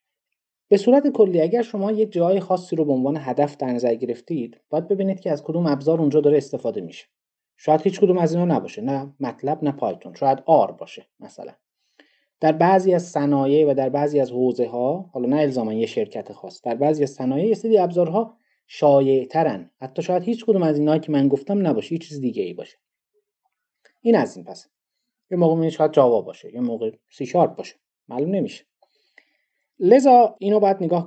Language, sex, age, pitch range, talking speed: Persian, male, 30-49, 130-195 Hz, 185 wpm